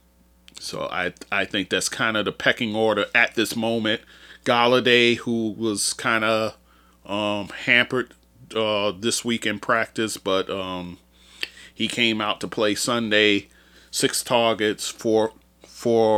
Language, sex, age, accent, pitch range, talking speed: English, male, 40-59, American, 90-120 Hz, 135 wpm